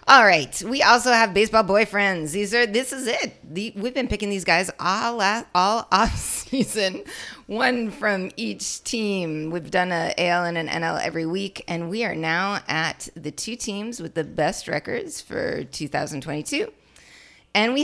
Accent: American